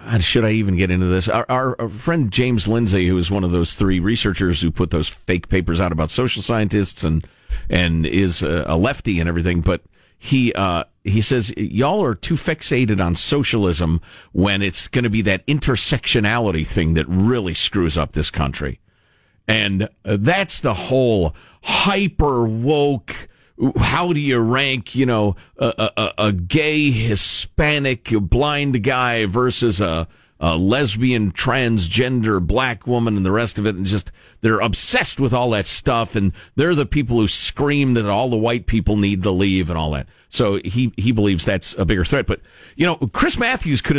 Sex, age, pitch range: male, 50-69, 90-125 Hz